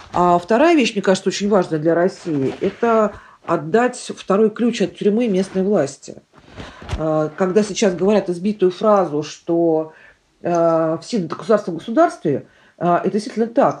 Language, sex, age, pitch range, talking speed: Russian, female, 40-59, 170-230 Hz, 125 wpm